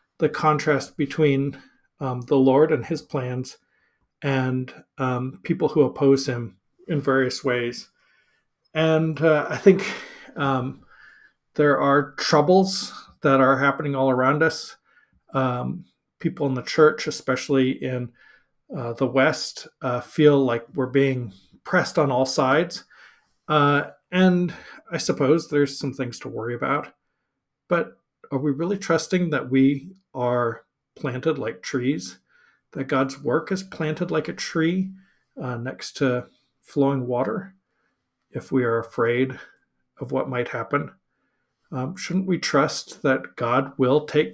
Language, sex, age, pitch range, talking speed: English, male, 40-59, 130-160 Hz, 135 wpm